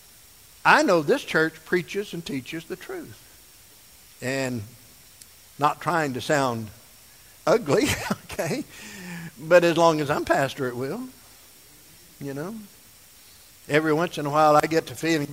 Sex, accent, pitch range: male, American, 155-225 Hz